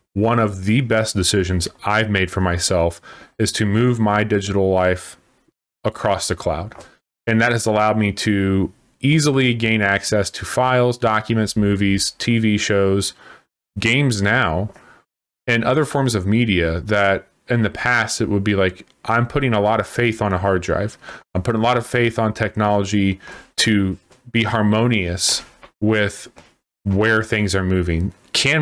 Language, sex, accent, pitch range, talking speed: English, male, American, 100-120 Hz, 155 wpm